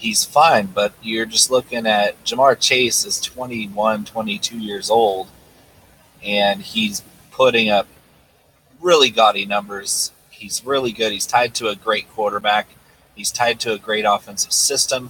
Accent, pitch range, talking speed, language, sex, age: American, 105-130 Hz, 145 wpm, English, male, 30-49